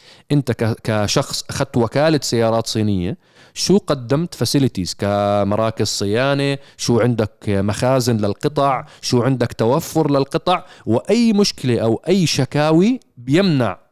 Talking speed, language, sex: 105 wpm, Arabic, male